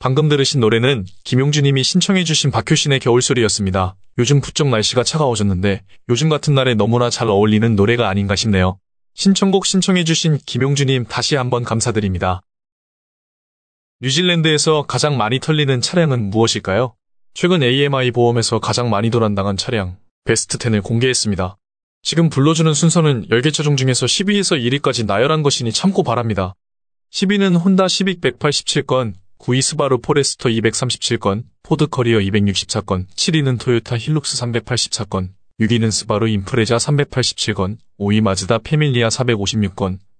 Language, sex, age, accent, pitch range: Korean, male, 20-39, native, 105-145 Hz